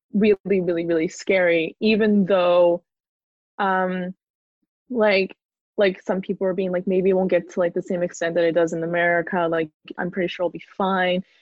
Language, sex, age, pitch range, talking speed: English, female, 20-39, 175-200 Hz, 185 wpm